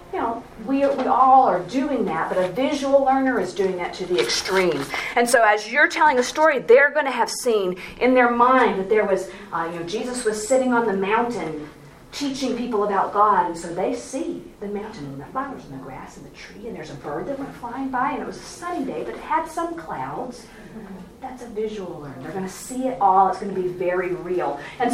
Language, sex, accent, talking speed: English, female, American, 240 wpm